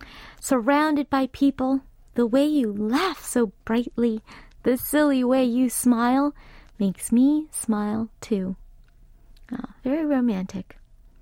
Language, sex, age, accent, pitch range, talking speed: English, female, 30-49, American, 235-300 Hz, 105 wpm